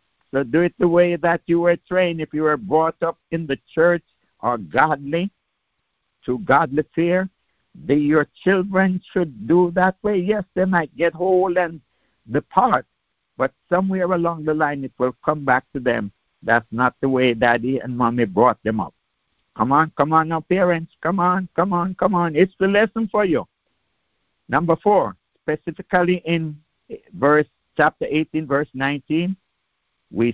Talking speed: 160 wpm